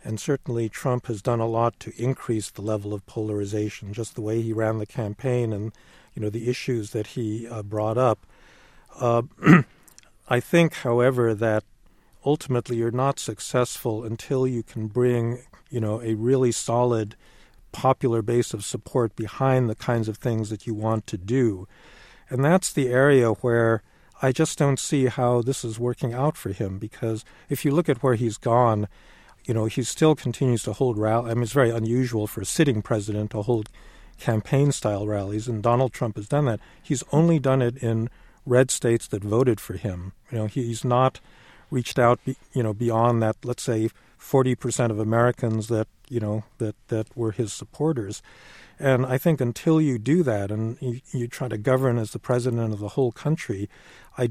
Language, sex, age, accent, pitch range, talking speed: English, male, 50-69, American, 110-130 Hz, 185 wpm